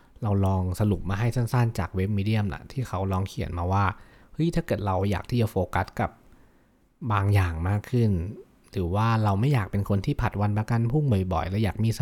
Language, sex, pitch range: Thai, male, 95-115 Hz